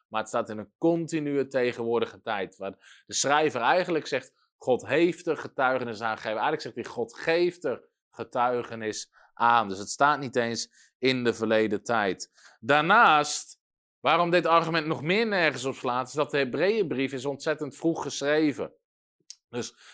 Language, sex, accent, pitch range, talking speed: Dutch, male, Dutch, 135-205 Hz, 165 wpm